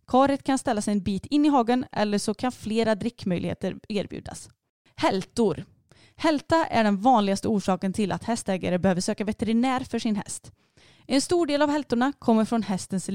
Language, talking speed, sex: Swedish, 175 wpm, female